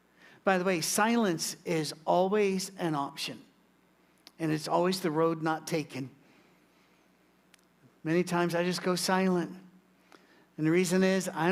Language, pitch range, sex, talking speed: English, 165-205 Hz, male, 135 wpm